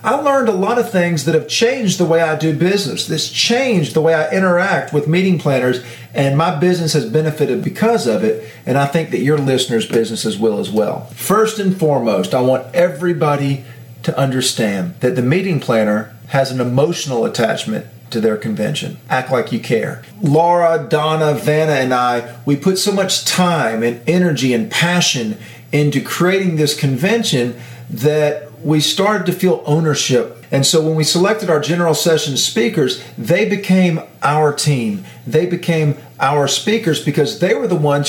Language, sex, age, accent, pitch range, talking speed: English, male, 40-59, American, 135-180 Hz, 175 wpm